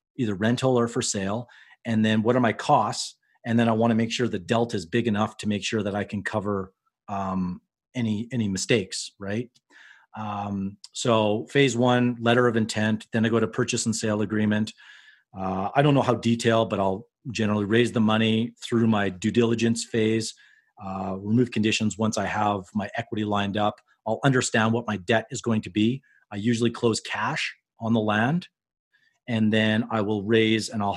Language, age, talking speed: English, 40-59, 190 wpm